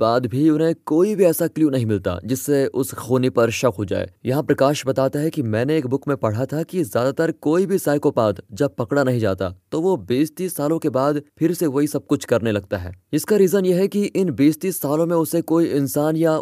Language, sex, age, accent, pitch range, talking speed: Hindi, male, 20-39, native, 115-155 Hz, 185 wpm